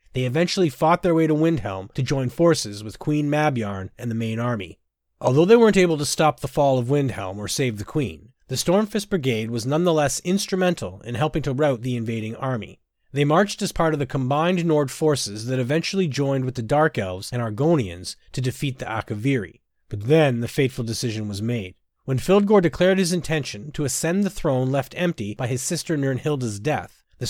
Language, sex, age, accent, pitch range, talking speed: English, male, 30-49, American, 120-160 Hz, 200 wpm